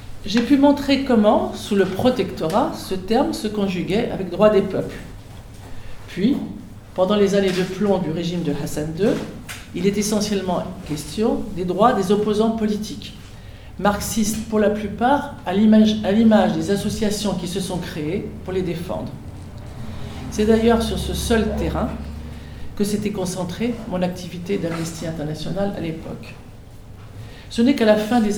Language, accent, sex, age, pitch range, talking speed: French, French, female, 50-69, 155-210 Hz, 160 wpm